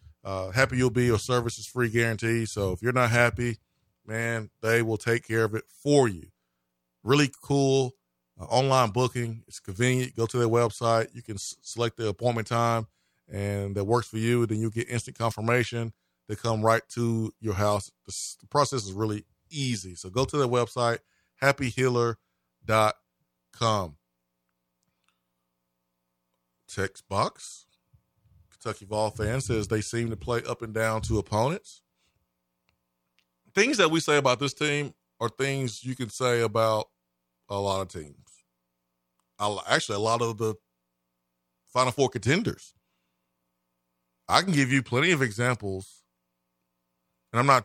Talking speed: 145 wpm